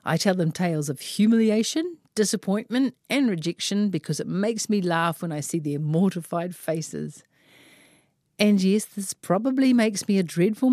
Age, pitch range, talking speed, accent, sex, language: 50-69, 150-205 Hz, 155 wpm, Australian, female, English